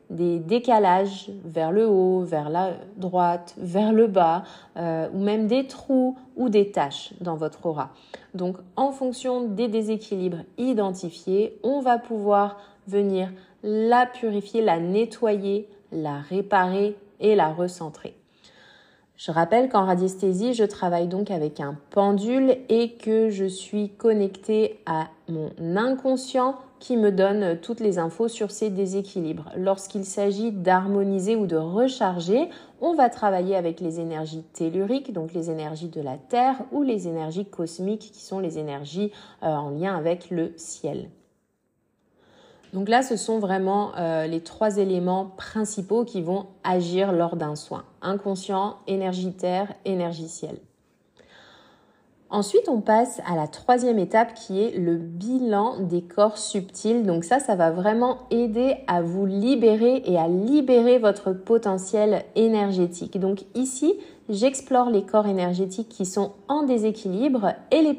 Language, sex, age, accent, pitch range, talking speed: French, female, 30-49, French, 180-225 Hz, 140 wpm